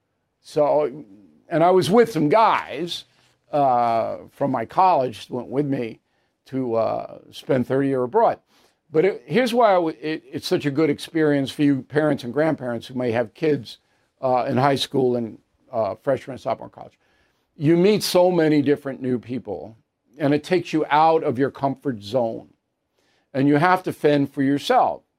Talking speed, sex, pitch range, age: 175 wpm, male, 130-170 Hz, 50-69